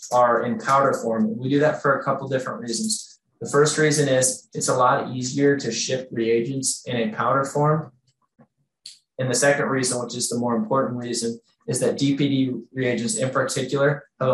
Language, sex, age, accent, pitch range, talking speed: English, male, 20-39, American, 120-140 Hz, 190 wpm